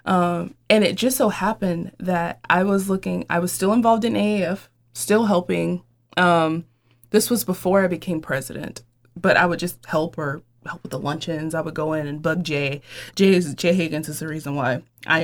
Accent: American